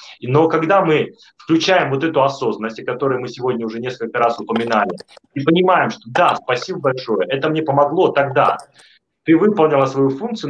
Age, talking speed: 30-49, 165 wpm